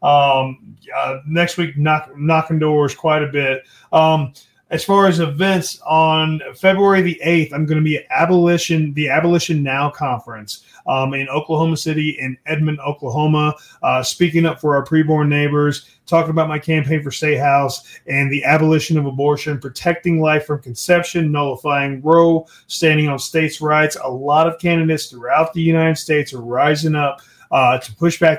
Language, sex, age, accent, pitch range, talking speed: English, male, 30-49, American, 140-160 Hz, 170 wpm